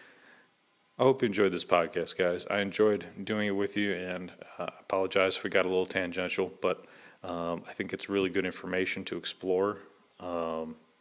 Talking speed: 185 wpm